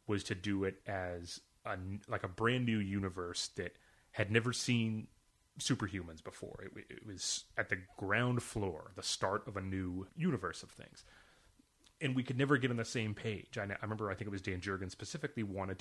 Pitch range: 95-115 Hz